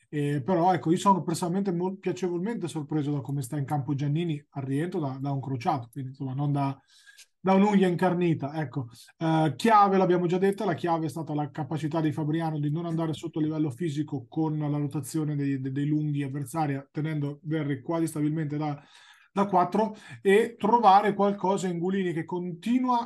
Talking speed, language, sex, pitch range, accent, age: 180 wpm, Italian, male, 150-185 Hz, native, 30-49